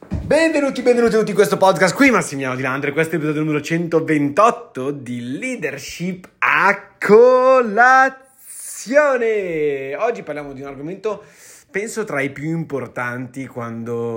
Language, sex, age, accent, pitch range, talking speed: Italian, male, 20-39, native, 130-170 Hz, 125 wpm